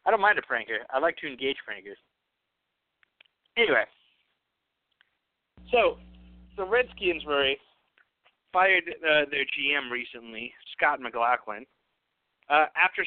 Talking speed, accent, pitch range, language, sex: 115 wpm, American, 110-155 Hz, English, male